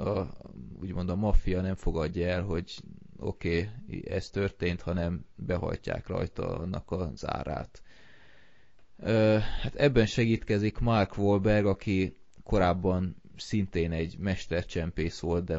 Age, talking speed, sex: 20-39, 120 wpm, male